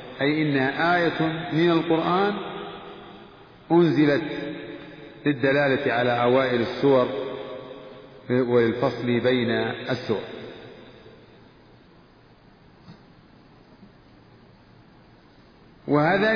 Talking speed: 50 wpm